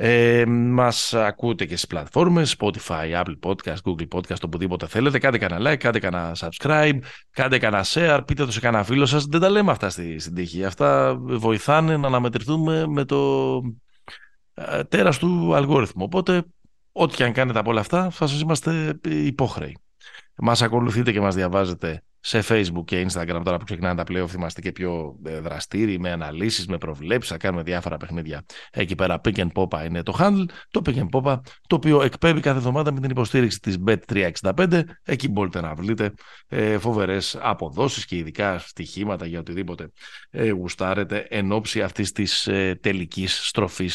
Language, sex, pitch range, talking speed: Greek, male, 90-130 Hz, 165 wpm